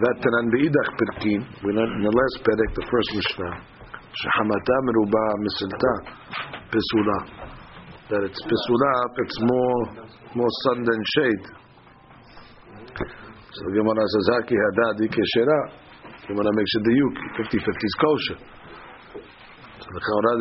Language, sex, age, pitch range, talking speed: English, male, 50-69, 110-125 Hz, 115 wpm